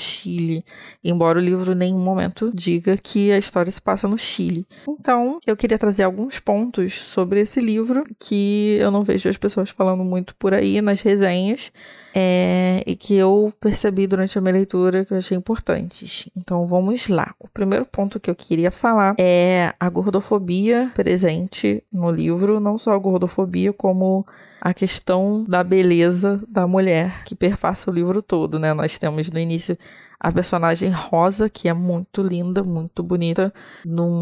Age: 20-39